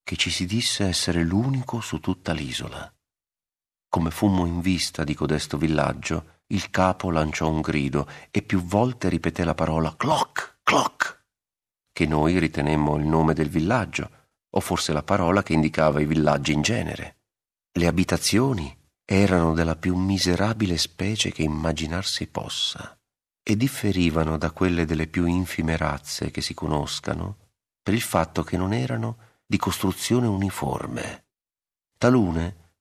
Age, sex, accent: 40-59, male, native